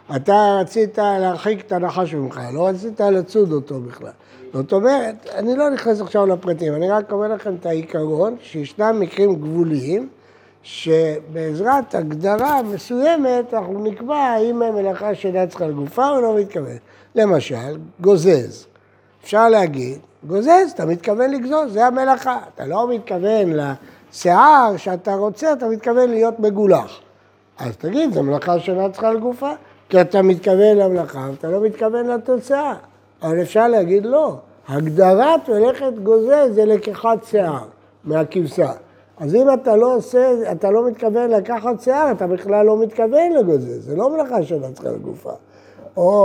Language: Hebrew